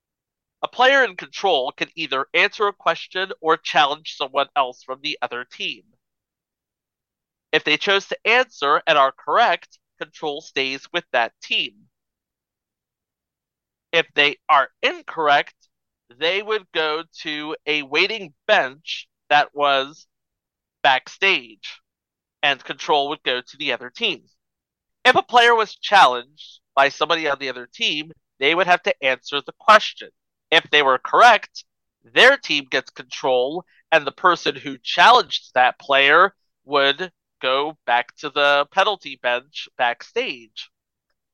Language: English